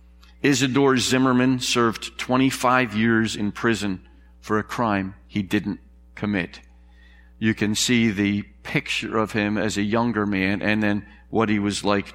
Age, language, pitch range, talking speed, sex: 50-69, English, 90-140 Hz, 150 wpm, male